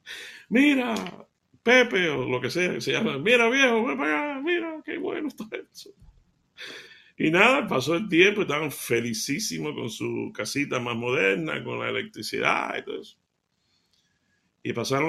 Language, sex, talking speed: Spanish, male, 155 wpm